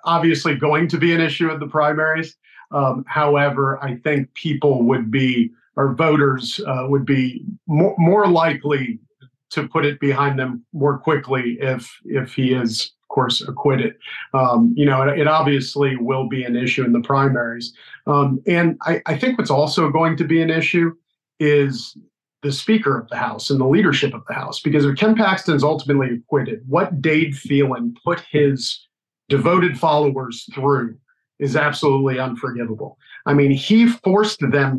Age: 40-59